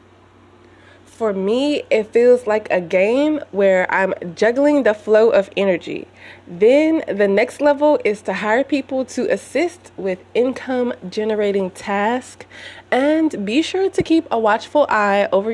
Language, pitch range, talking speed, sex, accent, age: English, 190-255 Hz, 145 wpm, female, American, 20-39